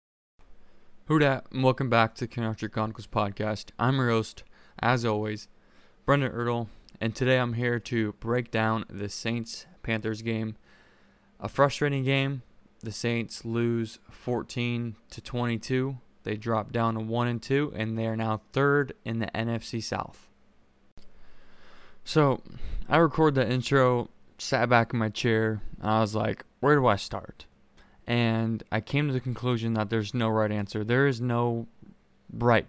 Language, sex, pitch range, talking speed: English, male, 110-125 Hz, 155 wpm